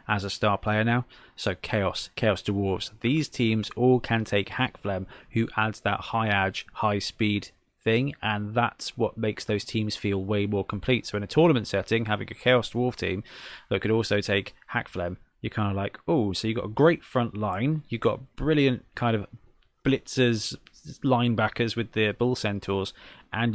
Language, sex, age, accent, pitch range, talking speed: English, male, 20-39, British, 100-125 Hz, 185 wpm